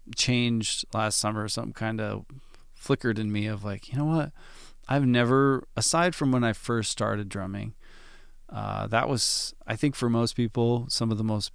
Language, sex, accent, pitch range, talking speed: English, male, American, 105-120 Hz, 180 wpm